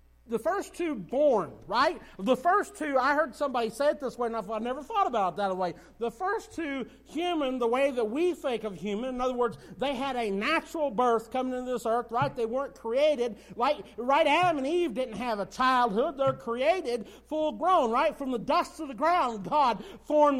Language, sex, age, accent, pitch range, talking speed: English, male, 40-59, American, 180-280 Hz, 215 wpm